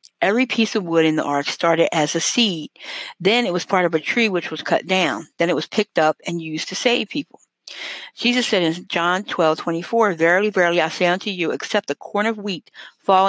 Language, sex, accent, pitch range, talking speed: English, female, American, 160-205 Hz, 225 wpm